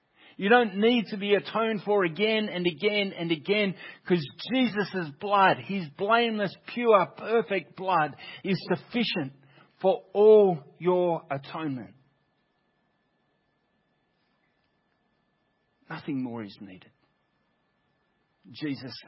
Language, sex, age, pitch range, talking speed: English, male, 50-69, 135-185 Hz, 100 wpm